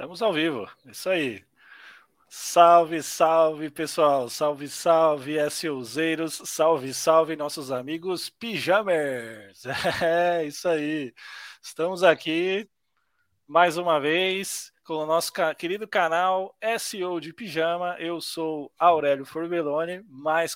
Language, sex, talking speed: Portuguese, male, 110 wpm